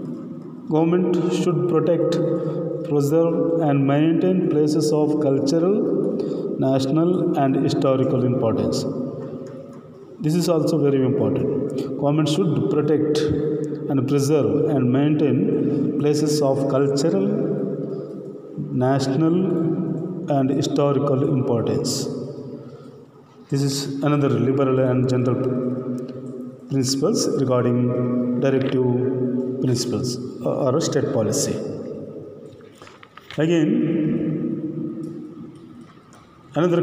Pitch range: 135-165 Hz